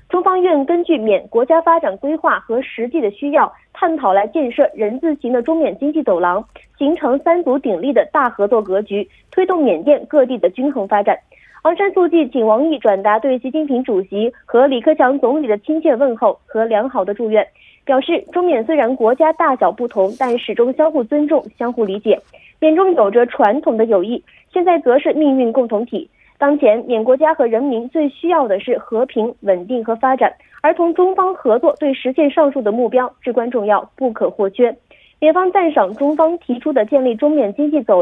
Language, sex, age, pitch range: Korean, female, 20-39, 235-310 Hz